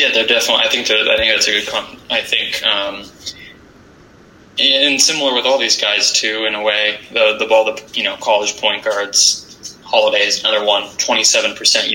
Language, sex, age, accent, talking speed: English, male, 20-39, American, 185 wpm